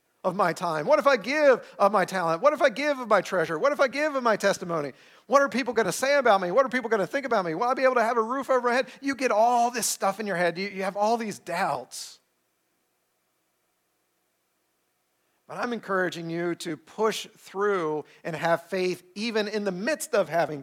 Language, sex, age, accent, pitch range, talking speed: English, male, 50-69, American, 155-220 Hz, 235 wpm